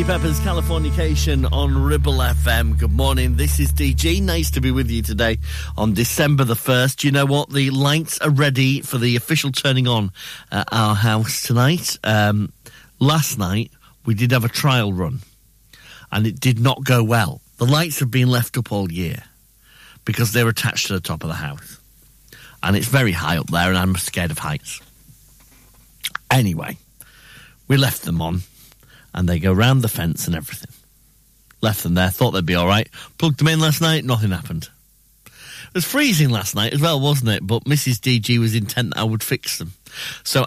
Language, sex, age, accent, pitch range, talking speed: English, male, 40-59, British, 95-140 Hz, 190 wpm